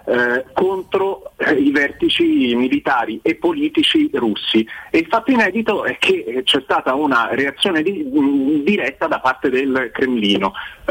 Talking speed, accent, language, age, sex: 145 wpm, native, Italian, 40-59, male